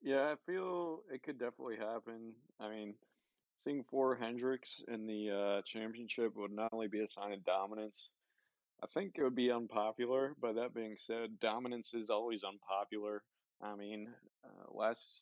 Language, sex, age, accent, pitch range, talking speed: English, male, 20-39, American, 105-125 Hz, 165 wpm